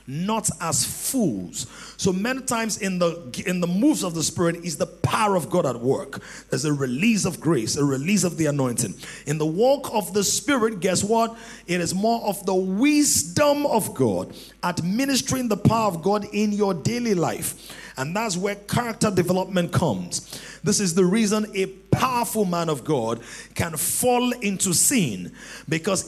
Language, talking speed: English, 175 wpm